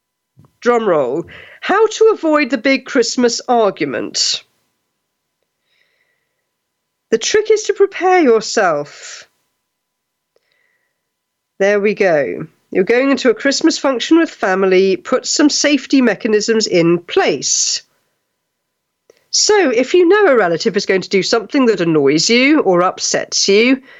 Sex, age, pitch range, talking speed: female, 50-69, 195-325 Hz, 125 wpm